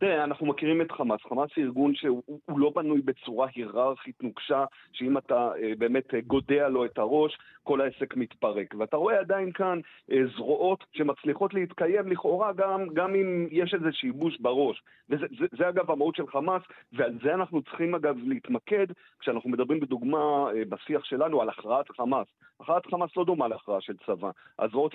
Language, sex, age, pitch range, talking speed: Hebrew, male, 40-59, 130-195 Hz, 180 wpm